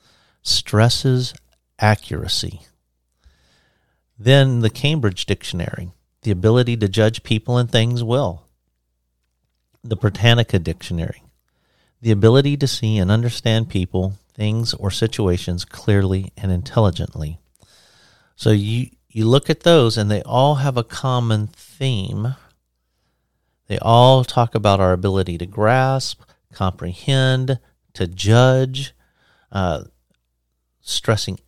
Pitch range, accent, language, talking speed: 95-120 Hz, American, English, 105 wpm